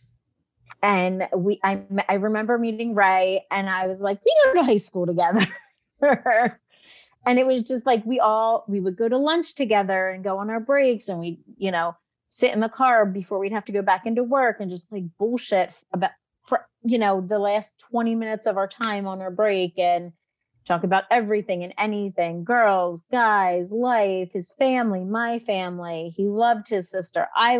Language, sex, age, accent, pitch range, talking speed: English, female, 30-49, American, 185-235 Hz, 185 wpm